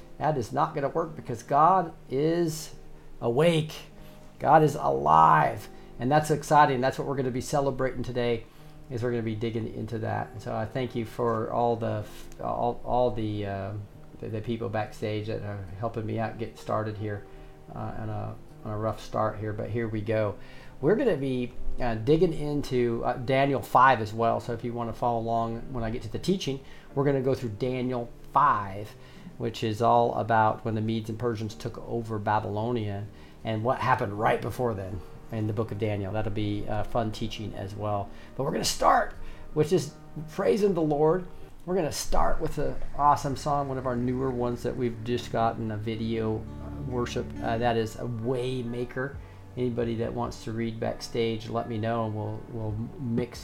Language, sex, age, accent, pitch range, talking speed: English, male, 40-59, American, 110-130 Hz, 195 wpm